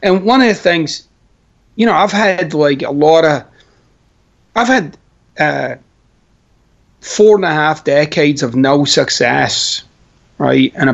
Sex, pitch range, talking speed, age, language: male, 130-175 Hz, 135 wpm, 30-49, English